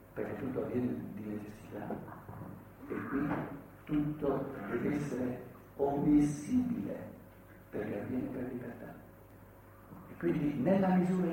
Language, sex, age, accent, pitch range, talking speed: Italian, male, 60-79, native, 115-175 Hz, 100 wpm